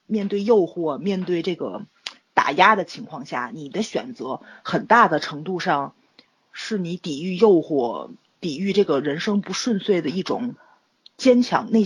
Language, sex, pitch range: Chinese, female, 175-235 Hz